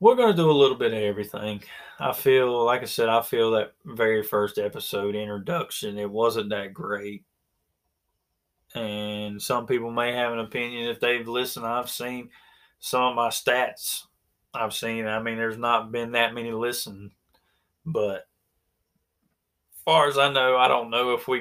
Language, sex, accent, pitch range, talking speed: English, male, American, 105-125 Hz, 175 wpm